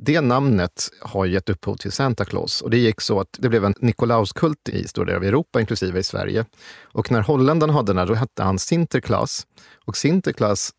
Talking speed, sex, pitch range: 205 wpm, male, 100-125 Hz